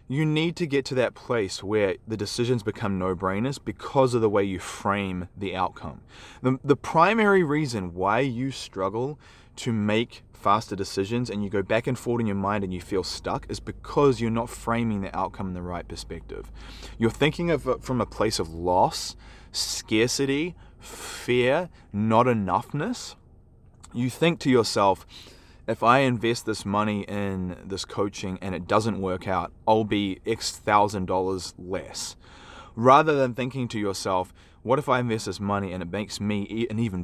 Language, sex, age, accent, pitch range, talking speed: English, male, 20-39, Australian, 95-125 Hz, 175 wpm